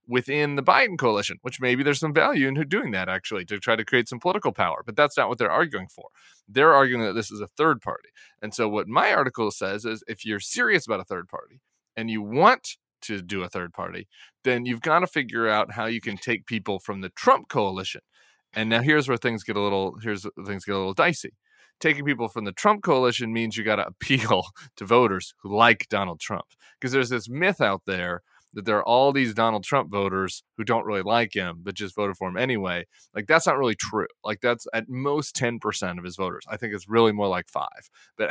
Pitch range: 100-125 Hz